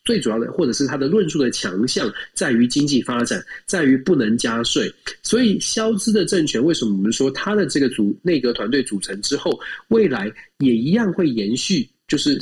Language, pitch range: Chinese, 130-200 Hz